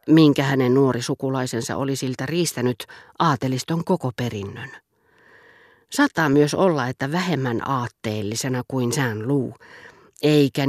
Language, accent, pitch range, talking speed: Finnish, native, 125-155 Hz, 105 wpm